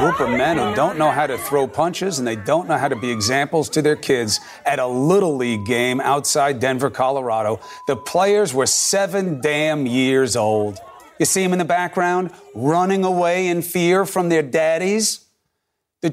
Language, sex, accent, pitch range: English, male, American, 140-195 Hz